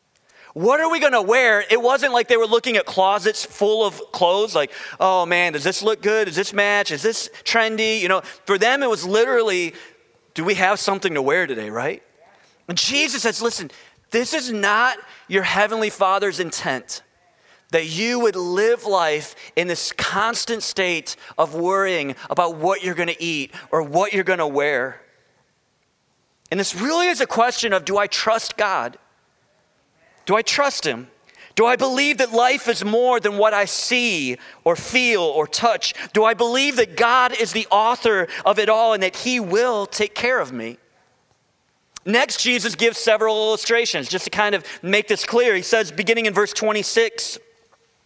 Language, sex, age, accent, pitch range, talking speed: English, male, 30-49, American, 190-240 Hz, 180 wpm